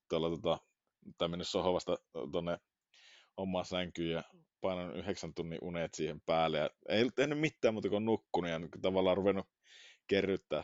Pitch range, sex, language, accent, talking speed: 80-100 Hz, male, Finnish, native, 150 wpm